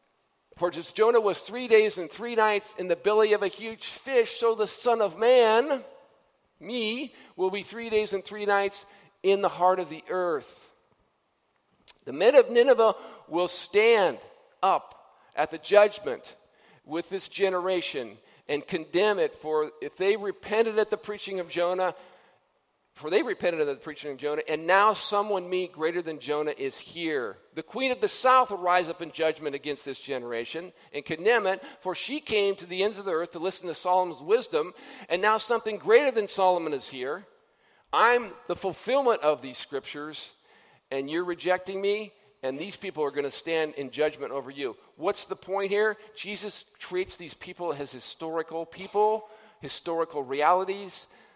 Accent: American